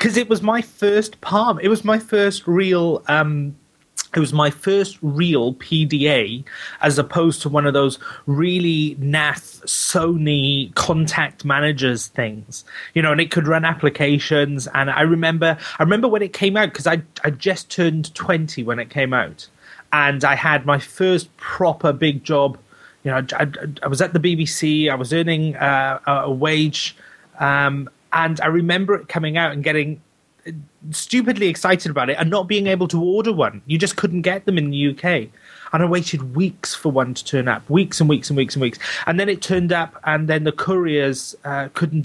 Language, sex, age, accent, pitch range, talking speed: English, male, 30-49, British, 145-175 Hz, 190 wpm